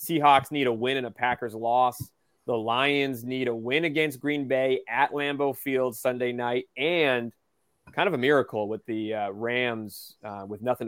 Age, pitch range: 20-39, 115-155 Hz